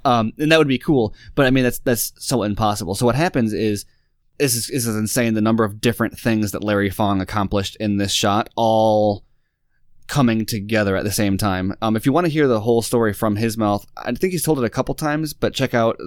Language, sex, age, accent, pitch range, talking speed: English, male, 20-39, American, 100-125 Hz, 240 wpm